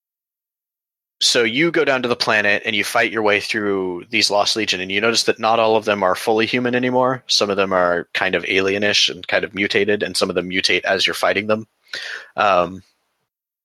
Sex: male